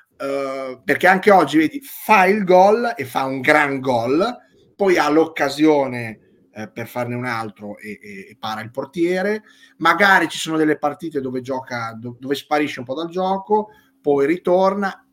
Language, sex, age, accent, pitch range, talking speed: Italian, male, 30-49, native, 120-165 Hz, 170 wpm